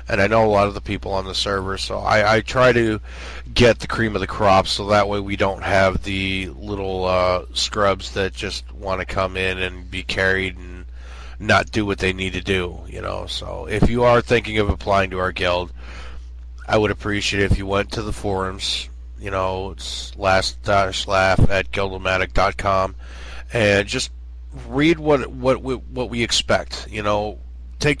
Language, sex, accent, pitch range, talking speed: English, male, American, 90-110 Hz, 190 wpm